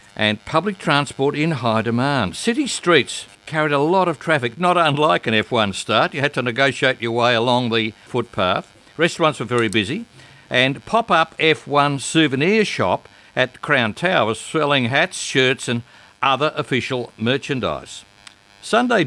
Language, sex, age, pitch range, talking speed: English, male, 60-79, 110-150 Hz, 150 wpm